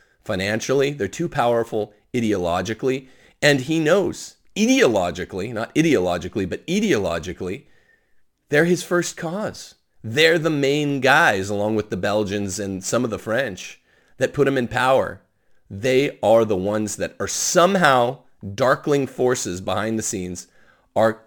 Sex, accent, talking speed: male, American, 135 wpm